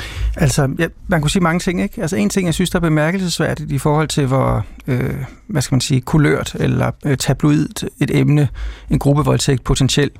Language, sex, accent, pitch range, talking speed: Danish, male, native, 135-160 Hz, 195 wpm